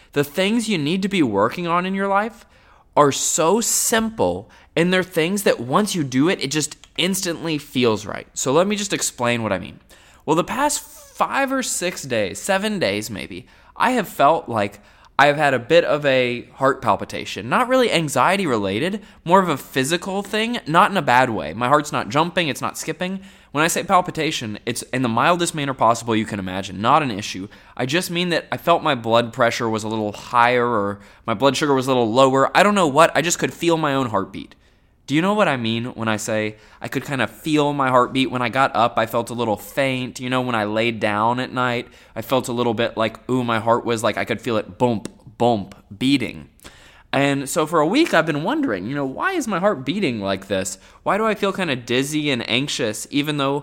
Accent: American